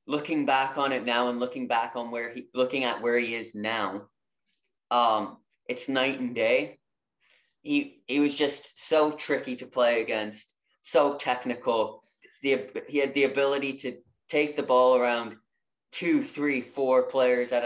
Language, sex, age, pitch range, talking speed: English, male, 30-49, 115-140 Hz, 160 wpm